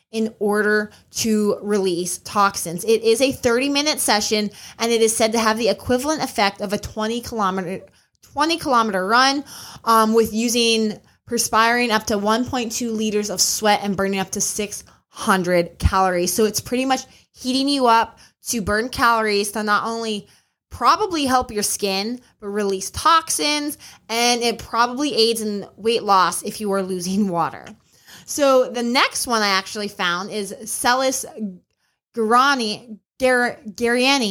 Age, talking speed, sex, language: 20-39, 145 wpm, female, English